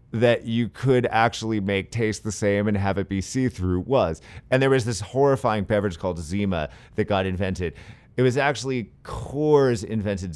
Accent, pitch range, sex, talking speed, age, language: American, 100-130 Hz, male, 175 wpm, 30-49, English